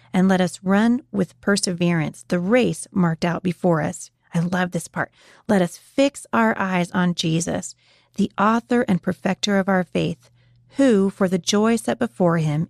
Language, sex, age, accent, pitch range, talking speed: English, female, 30-49, American, 165-215 Hz, 175 wpm